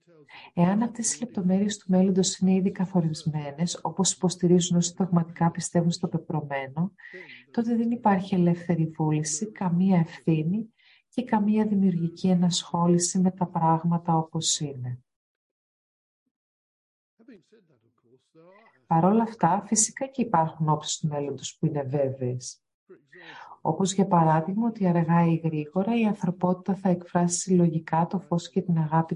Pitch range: 160-195 Hz